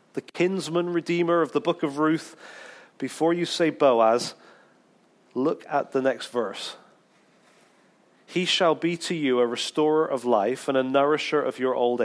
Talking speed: 160 wpm